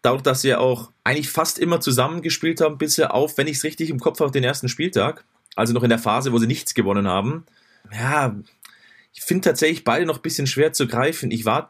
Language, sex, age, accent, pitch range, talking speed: German, male, 30-49, German, 120-150 Hz, 230 wpm